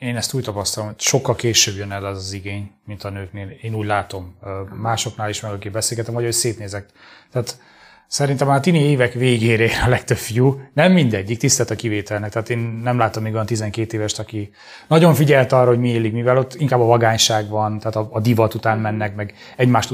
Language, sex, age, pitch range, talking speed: Hungarian, male, 30-49, 105-130 Hz, 215 wpm